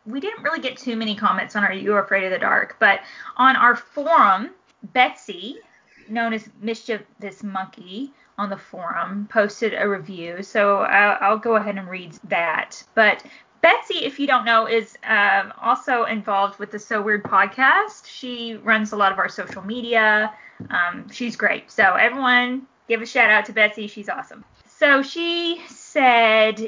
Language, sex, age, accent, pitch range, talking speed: English, female, 10-29, American, 200-255 Hz, 175 wpm